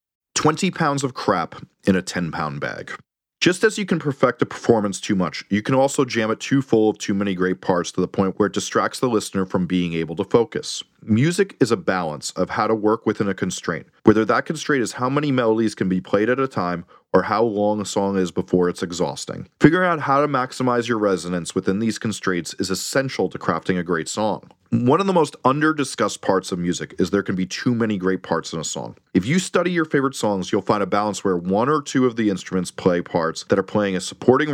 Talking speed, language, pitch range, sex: 235 wpm, English, 95-135 Hz, male